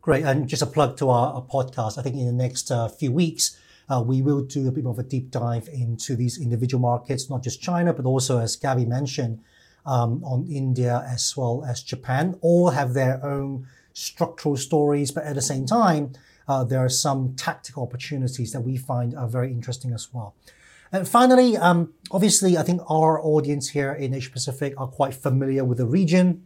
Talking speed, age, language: 195 wpm, 30-49, English